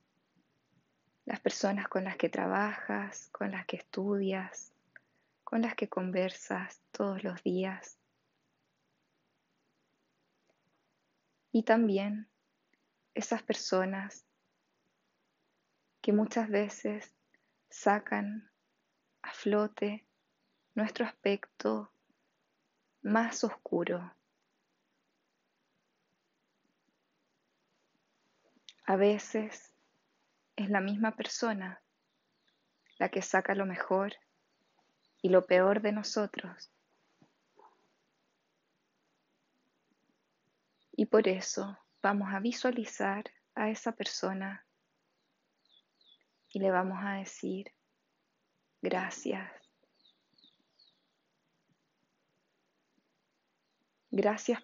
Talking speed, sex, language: 70 wpm, female, Spanish